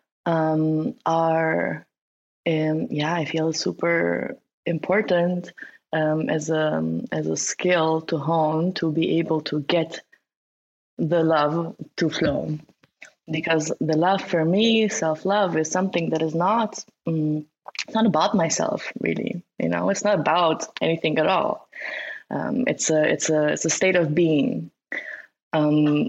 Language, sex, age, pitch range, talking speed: English, female, 20-39, 155-190 Hz, 145 wpm